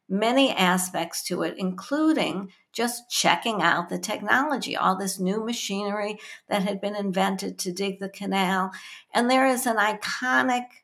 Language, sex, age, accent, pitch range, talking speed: English, female, 60-79, American, 185-220 Hz, 150 wpm